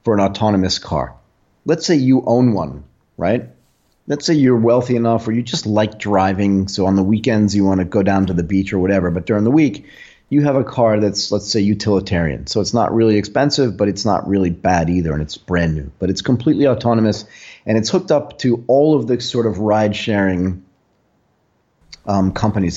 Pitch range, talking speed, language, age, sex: 95-115 Hz, 210 wpm, English, 30-49, male